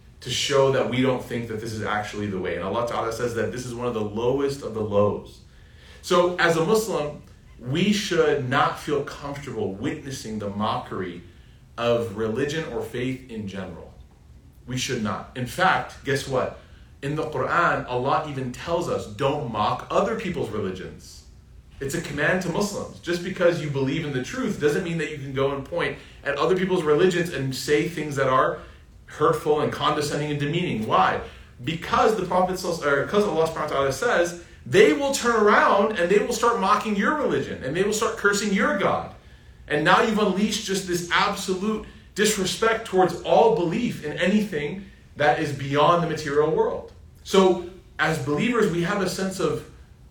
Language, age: English, 30-49